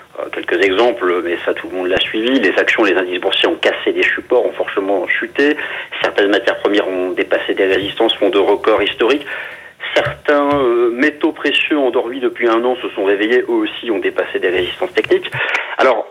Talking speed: 190 wpm